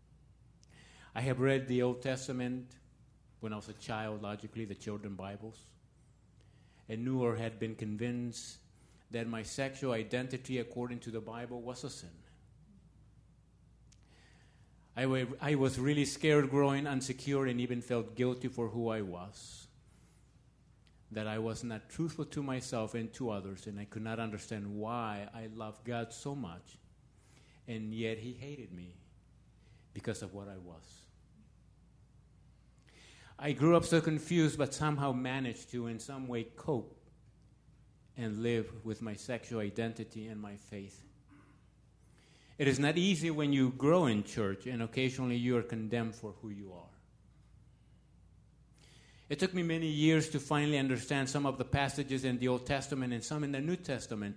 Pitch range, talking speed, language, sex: 110-135 Hz, 155 wpm, English, male